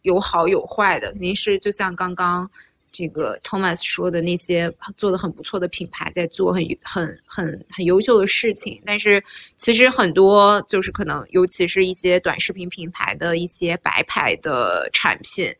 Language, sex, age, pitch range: Chinese, female, 20-39, 175-210 Hz